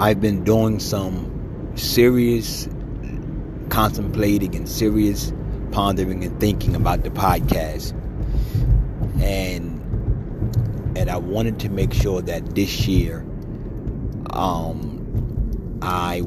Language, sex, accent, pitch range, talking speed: English, male, American, 95-115 Hz, 95 wpm